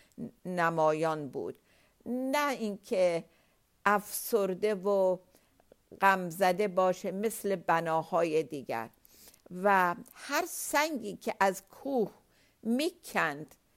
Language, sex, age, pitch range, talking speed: Persian, female, 50-69, 185-230 Hz, 80 wpm